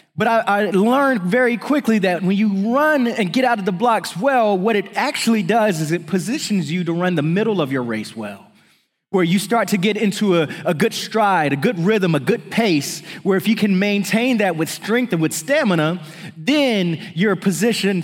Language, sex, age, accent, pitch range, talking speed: English, male, 20-39, American, 160-200 Hz, 210 wpm